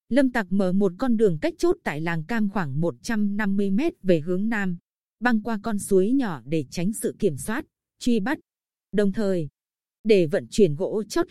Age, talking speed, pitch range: 20-39, 185 wpm, 190-235 Hz